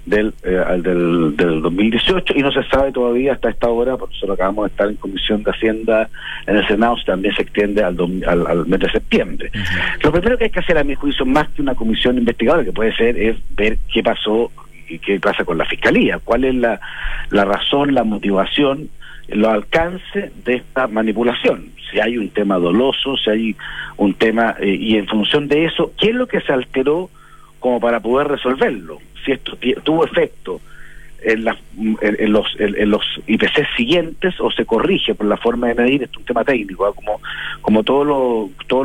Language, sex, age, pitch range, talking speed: Spanish, male, 50-69, 105-135 Hz, 195 wpm